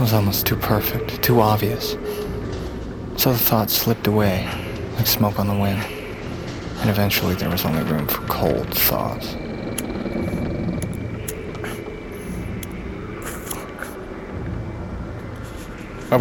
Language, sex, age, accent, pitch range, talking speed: English, male, 40-59, American, 95-115 Hz, 100 wpm